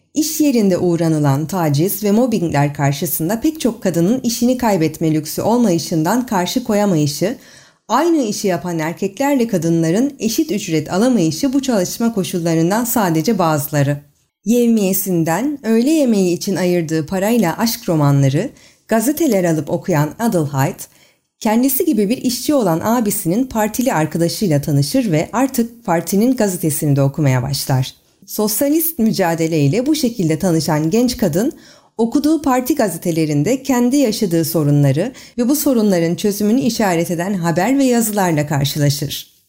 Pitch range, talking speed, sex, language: 165-245 Hz, 125 wpm, female, Turkish